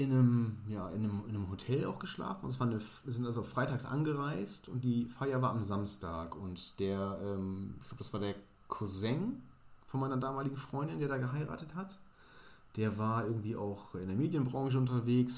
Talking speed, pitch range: 195 wpm, 100-135 Hz